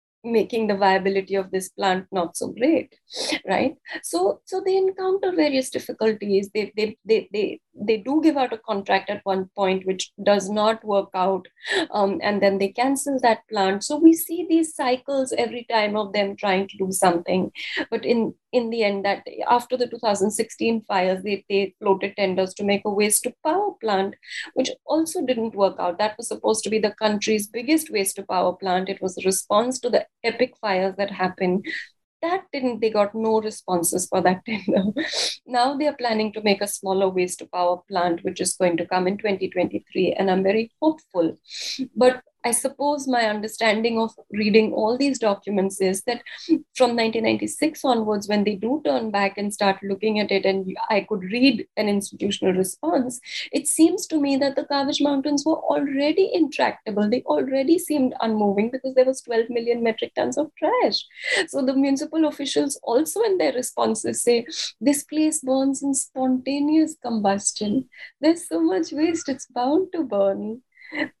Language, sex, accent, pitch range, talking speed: English, female, Indian, 195-275 Hz, 180 wpm